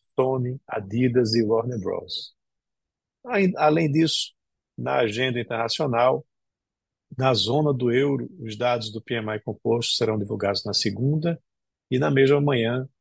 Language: Portuguese